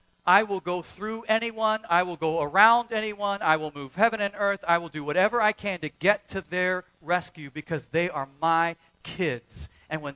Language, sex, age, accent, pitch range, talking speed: English, male, 40-59, American, 130-185 Hz, 200 wpm